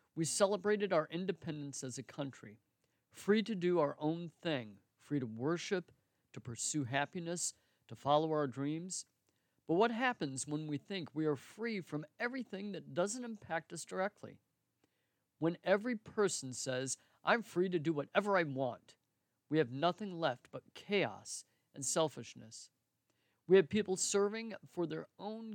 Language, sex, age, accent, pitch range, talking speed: English, male, 50-69, American, 135-180 Hz, 155 wpm